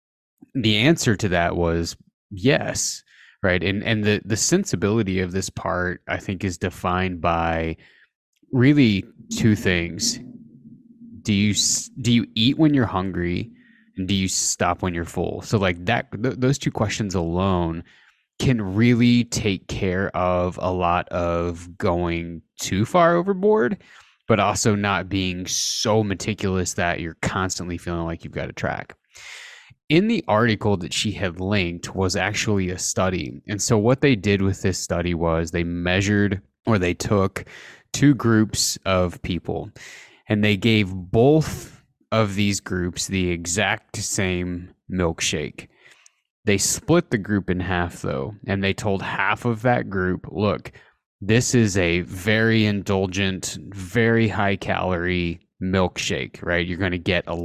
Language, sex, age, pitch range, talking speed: English, male, 20-39, 90-110 Hz, 150 wpm